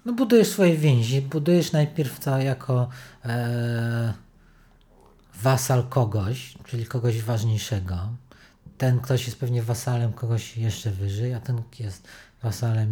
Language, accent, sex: Polish, native, male